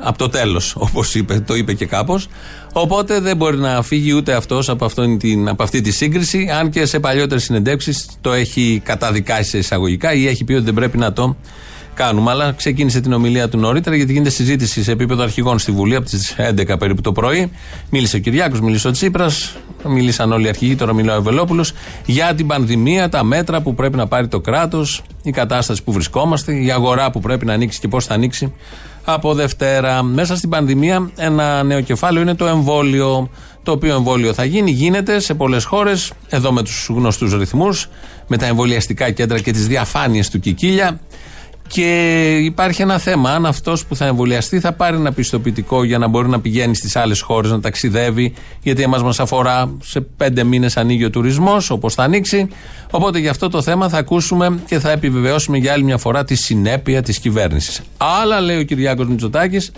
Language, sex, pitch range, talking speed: Greek, male, 115-155 Hz, 190 wpm